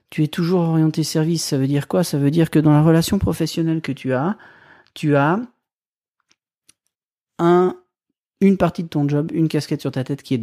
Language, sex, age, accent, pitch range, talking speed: French, male, 40-59, French, 125-160 Hz, 200 wpm